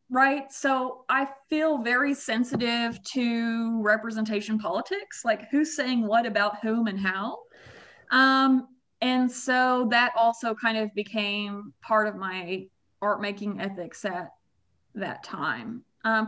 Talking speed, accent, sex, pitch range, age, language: 130 wpm, American, female, 205-255 Hz, 20-39, English